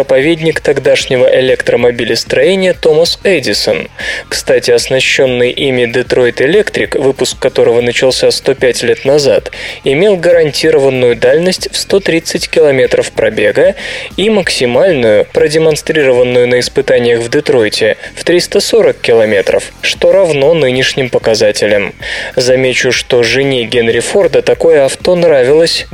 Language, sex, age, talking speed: Russian, male, 20-39, 100 wpm